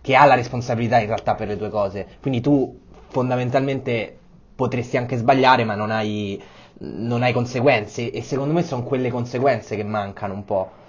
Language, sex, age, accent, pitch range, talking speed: Italian, male, 20-39, native, 105-125 Hz, 175 wpm